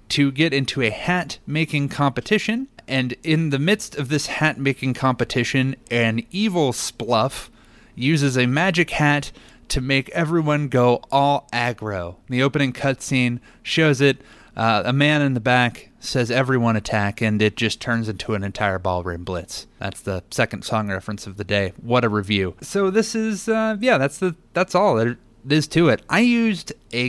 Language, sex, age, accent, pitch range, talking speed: English, male, 30-49, American, 120-150 Hz, 170 wpm